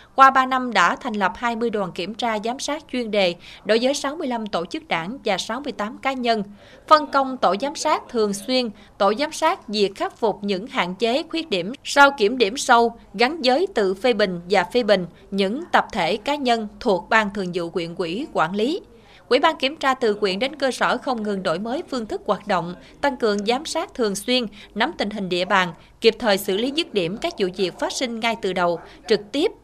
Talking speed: 225 wpm